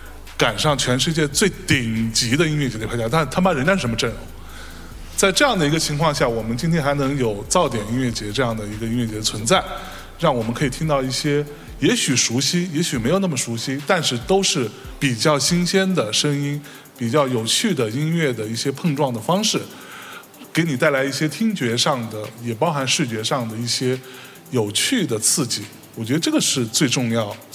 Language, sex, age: Chinese, male, 20-39